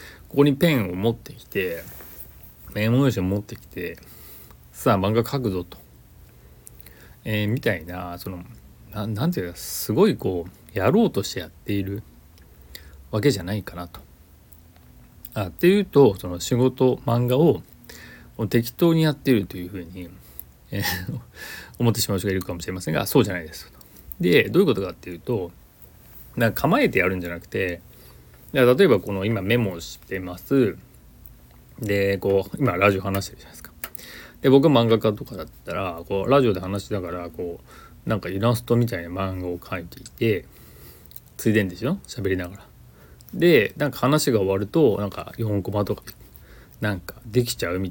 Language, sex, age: Japanese, male, 40-59